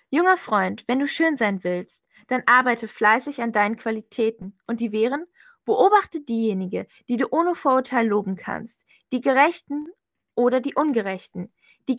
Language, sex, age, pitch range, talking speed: German, female, 10-29, 215-285 Hz, 150 wpm